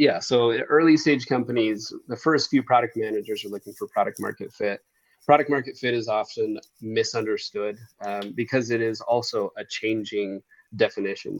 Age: 30-49